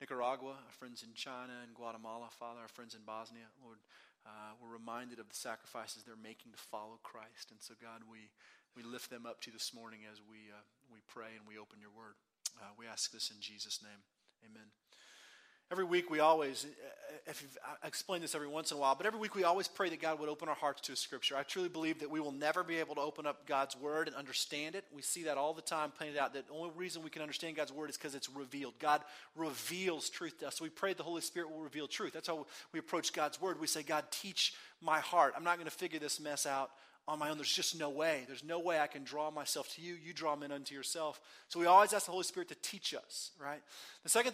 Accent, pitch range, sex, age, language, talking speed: American, 140-190 Hz, male, 30-49, English, 255 wpm